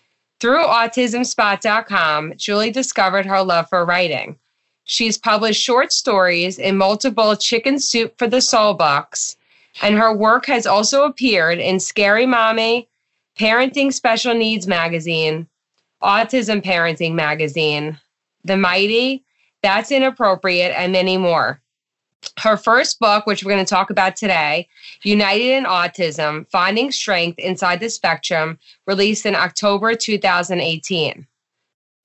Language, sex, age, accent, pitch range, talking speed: English, female, 20-39, American, 180-225 Hz, 120 wpm